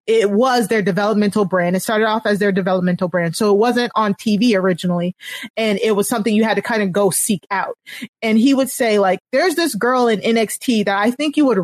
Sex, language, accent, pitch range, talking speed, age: female, English, American, 195-240 Hz, 230 wpm, 30-49